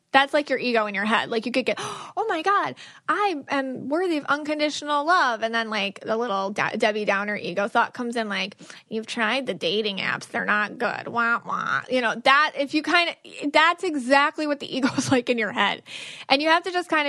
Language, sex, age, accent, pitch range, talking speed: English, female, 20-39, American, 220-290 Hz, 230 wpm